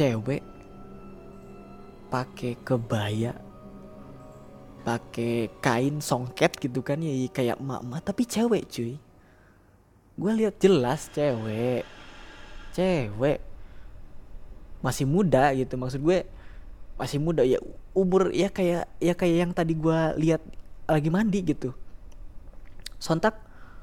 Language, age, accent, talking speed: Indonesian, 20-39, native, 105 wpm